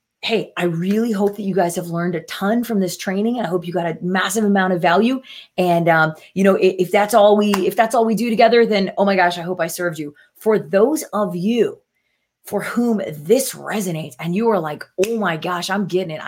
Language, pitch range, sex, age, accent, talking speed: English, 175-215 Hz, female, 30-49, American, 240 wpm